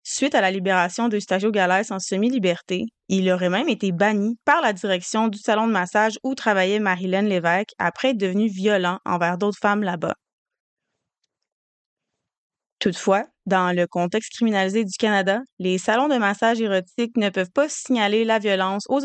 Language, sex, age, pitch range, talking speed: French, female, 20-39, 190-225 Hz, 160 wpm